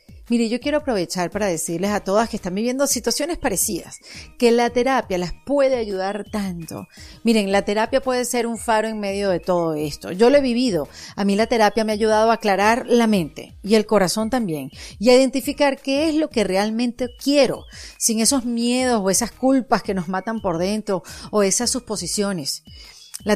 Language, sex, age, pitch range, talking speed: Spanish, female, 40-59, 190-245 Hz, 195 wpm